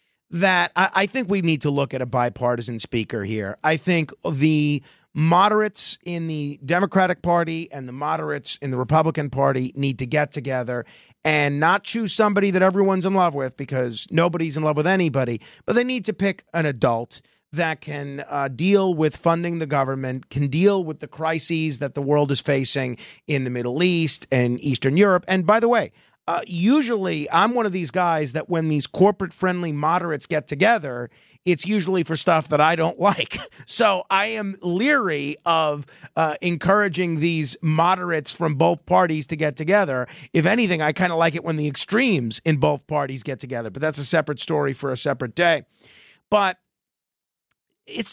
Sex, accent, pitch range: male, American, 140-185 Hz